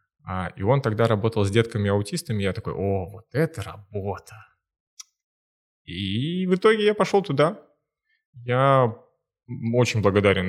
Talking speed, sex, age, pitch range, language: 120 wpm, male, 20-39, 95-130 Hz, Russian